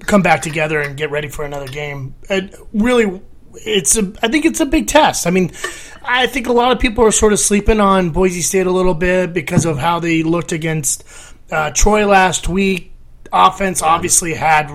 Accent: American